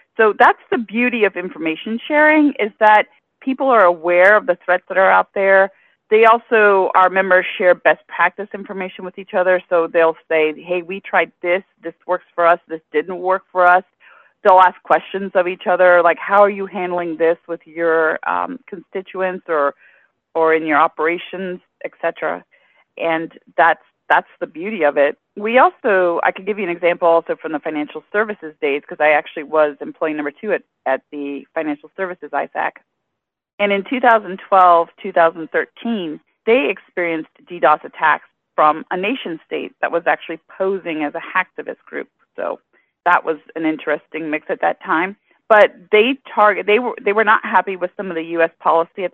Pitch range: 160-195 Hz